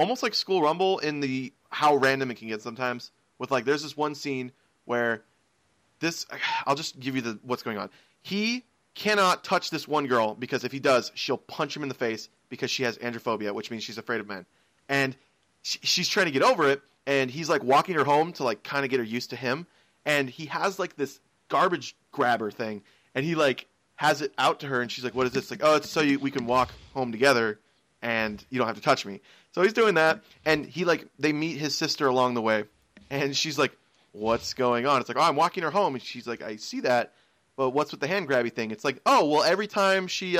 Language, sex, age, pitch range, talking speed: English, male, 30-49, 125-175 Hz, 240 wpm